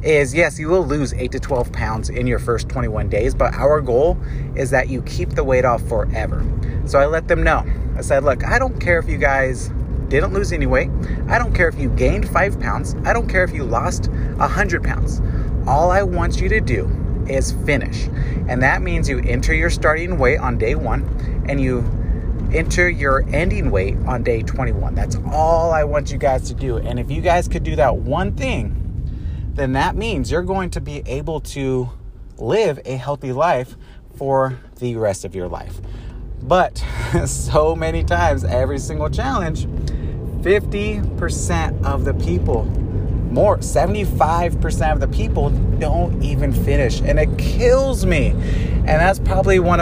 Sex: male